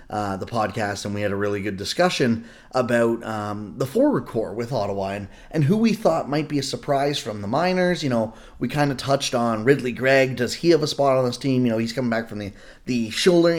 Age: 20-39